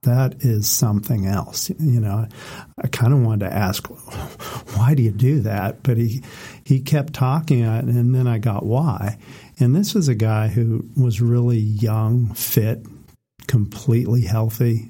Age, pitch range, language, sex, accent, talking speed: 40-59, 110-130 Hz, English, male, American, 160 wpm